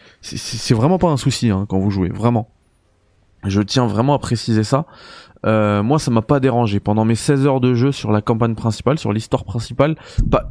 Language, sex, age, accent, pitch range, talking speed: French, male, 20-39, French, 110-135 Hz, 205 wpm